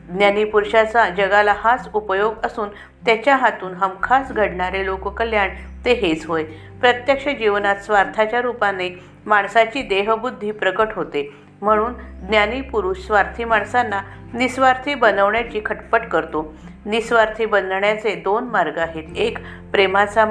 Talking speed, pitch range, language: 70 wpm, 180-230 Hz, Marathi